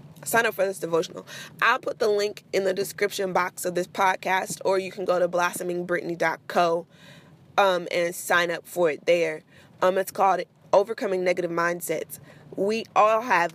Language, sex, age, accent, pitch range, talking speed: English, female, 20-39, American, 175-215 Hz, 165 wpm